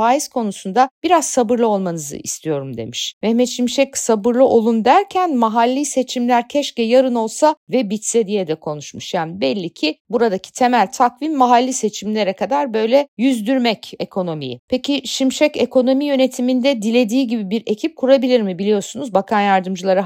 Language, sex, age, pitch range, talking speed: Turkish, female, 50-69, 200-270 Hz, 140 wpm